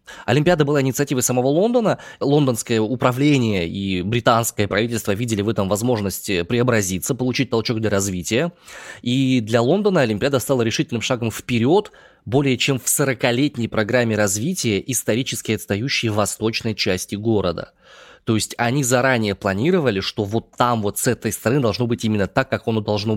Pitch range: 105-140 Hz